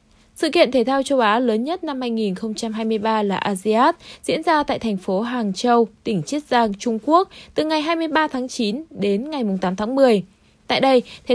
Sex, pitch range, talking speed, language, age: female, 215-275 Hz, 195 wpm, Vietnamese, 20-39